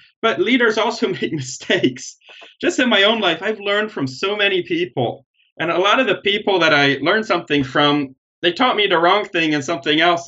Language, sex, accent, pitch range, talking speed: English, male, American, 135-195 Hz, 210 wpm